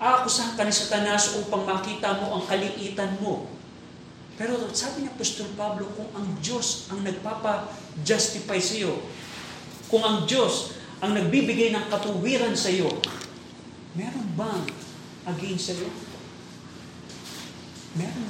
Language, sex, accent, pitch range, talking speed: Filipino, male, native, 185-235 Hz, 120 wpm